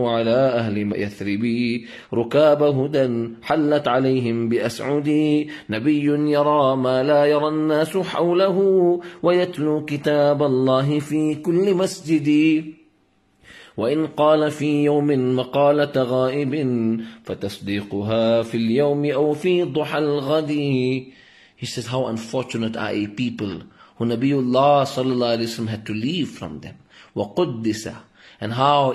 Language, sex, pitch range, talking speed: English, male, 115-150 Hz, 105 wpm